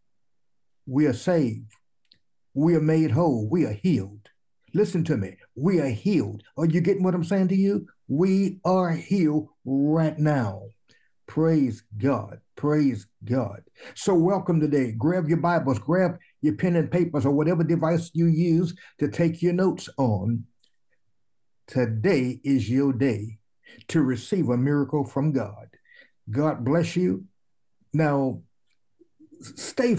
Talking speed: 140 wpm